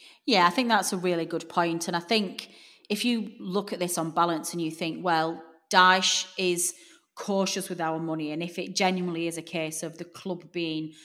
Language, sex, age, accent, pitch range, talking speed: English, female, 30-49, British, 160-185 Hz, 210 wpm